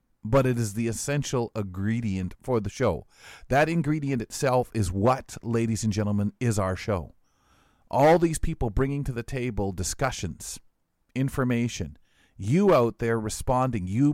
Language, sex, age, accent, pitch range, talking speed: English, male, 40-59, American, 105-130 Hz, 145 wpm